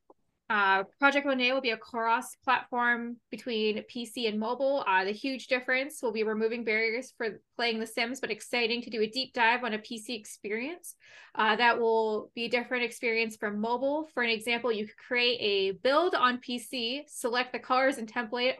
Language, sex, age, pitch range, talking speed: English, female, 20-39, 215-250 Hz, 185 wpm